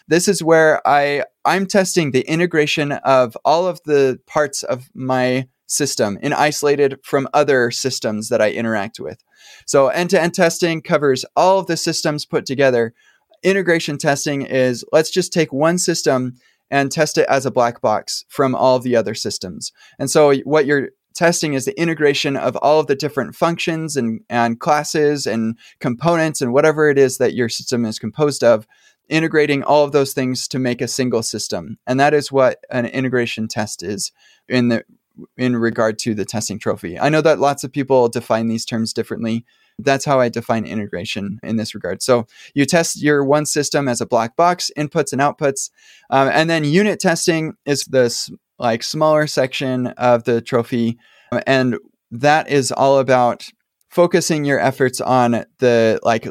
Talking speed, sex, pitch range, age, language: 175 wpm, male, 120-155 Hz, 20-39, English